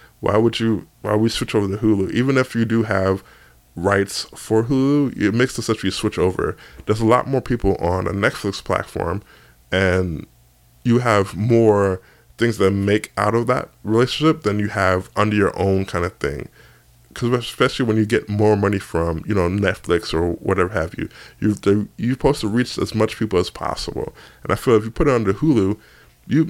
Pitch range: 90-115 Hz